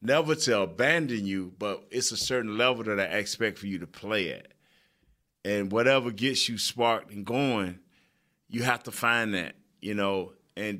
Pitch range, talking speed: 95-120 Hz, 180 wpm